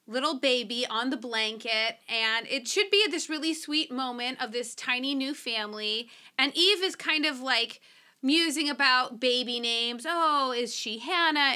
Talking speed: 170 wpm